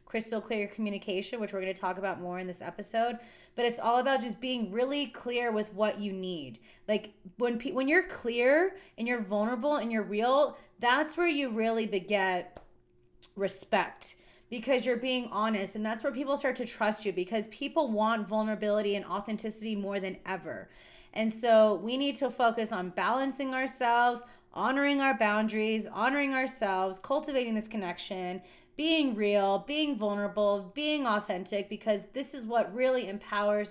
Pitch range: 195-240 Hz